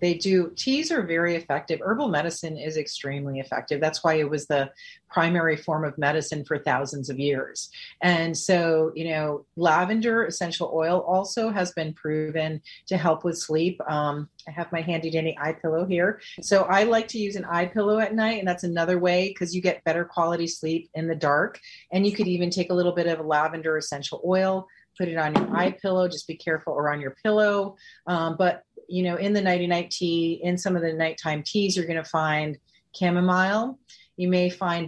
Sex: female